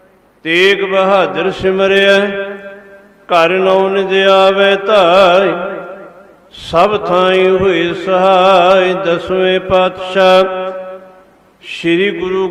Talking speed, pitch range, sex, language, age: 75 wpm, 185-195 Hz, male, Punjabi, 50-69